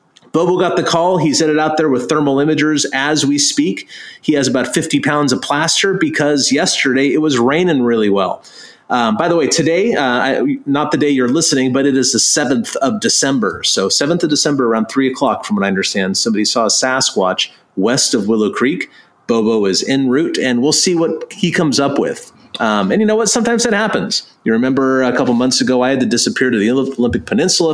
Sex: male